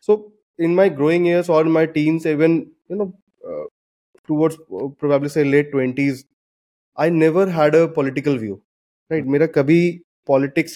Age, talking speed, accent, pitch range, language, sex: 20-39, 155 wpm, Indian, 140-170 Hz, English, male